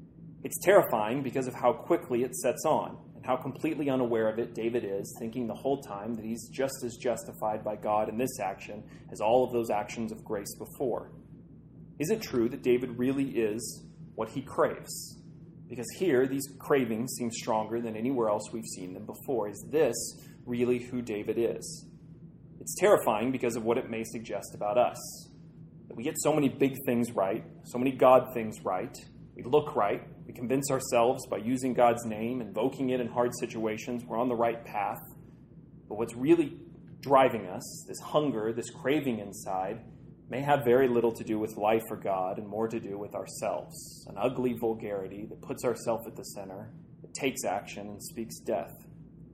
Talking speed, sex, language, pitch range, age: 185 wpm, male, English, 110-130 Hz, 30-49